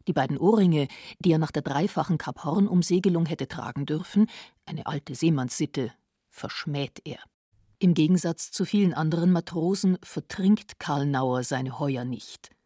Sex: female